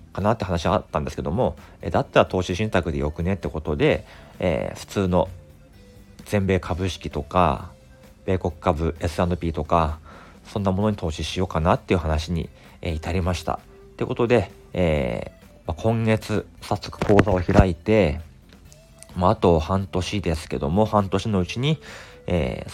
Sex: male